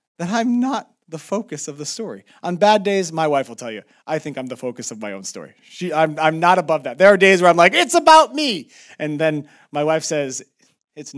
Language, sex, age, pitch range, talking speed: English, male, 30-49, 170-250 Hz, 245 wpm